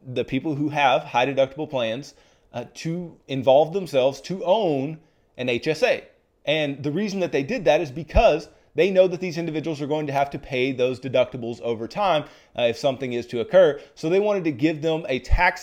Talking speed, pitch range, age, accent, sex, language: 205 wpm, 125-160 Hz, 30-49, American, male, English